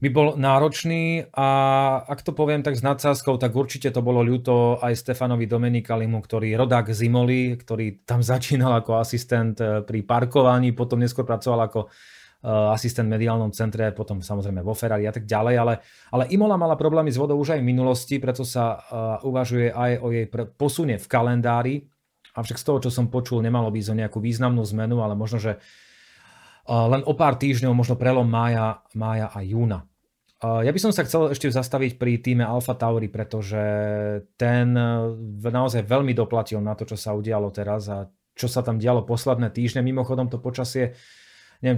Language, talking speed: Slovak, 175 wpm